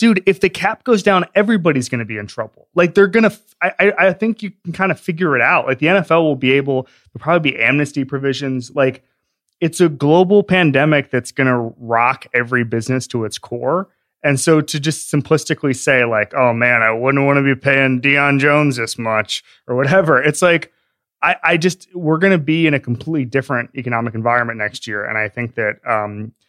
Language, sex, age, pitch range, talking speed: English, male, 20-39, 110-145 Hz, 215 wpm